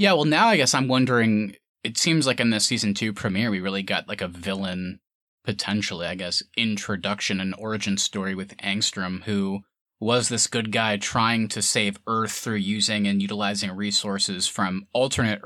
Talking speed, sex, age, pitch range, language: 180 wpm, male, 20-39, 100-115 Hz, English